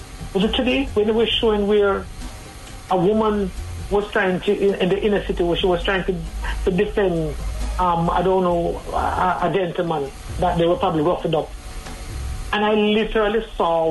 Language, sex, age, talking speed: English, male, 60-79, 185 wpm